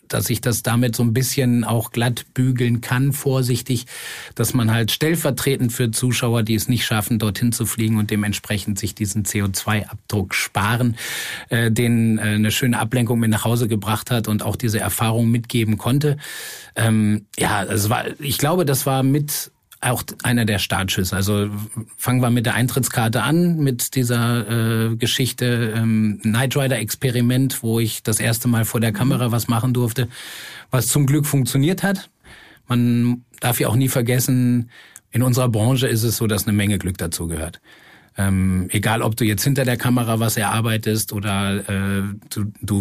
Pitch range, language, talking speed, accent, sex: 110-130 Hz, German, 170 wpm, German, male